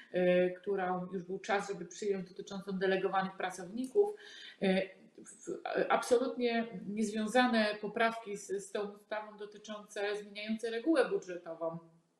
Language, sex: Polish, female